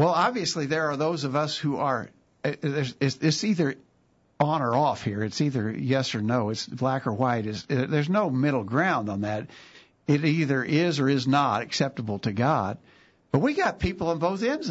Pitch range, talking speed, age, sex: 115-155 Hz, 190 wpm, 60-79, male